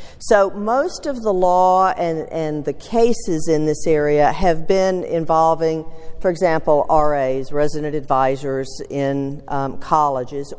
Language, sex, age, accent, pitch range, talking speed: English, female, 50-69, American, 160-225 Hz, 130 wpm